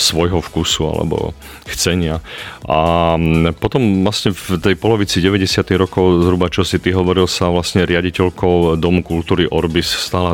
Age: 40-59